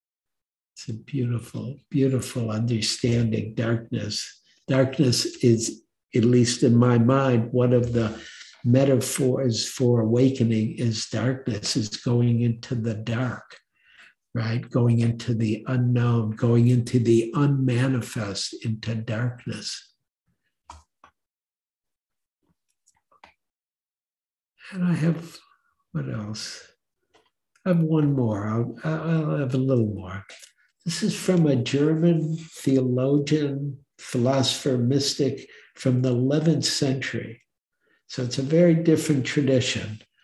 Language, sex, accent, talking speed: English, male, American, 105 wpm